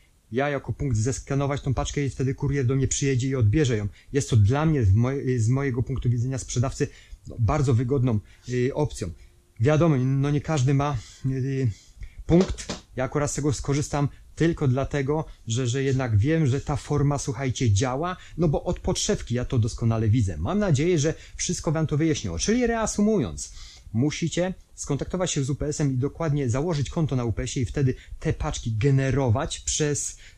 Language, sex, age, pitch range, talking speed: Polish, male, 30-49, 115-145 Hz, 165 wpm